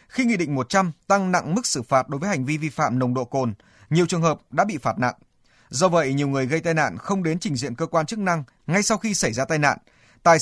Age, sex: 20-39, male